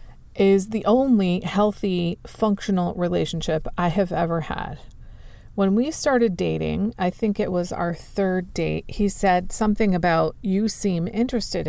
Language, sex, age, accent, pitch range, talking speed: English, female, 40-59, American, 175-220 Hz, 145 wpm